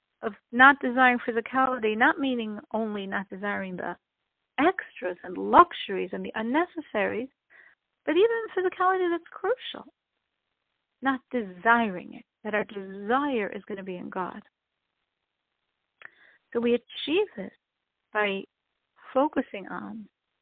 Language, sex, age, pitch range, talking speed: English, female, 50-69, 210-255 Hz, 115 wpm